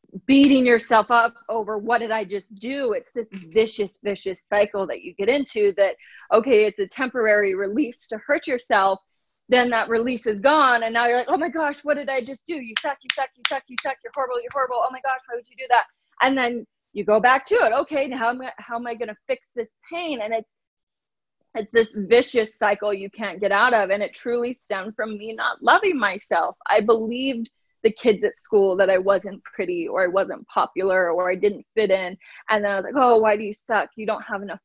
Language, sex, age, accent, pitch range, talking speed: English, female, 20-39, American, 205-265 Hz, 235 wpm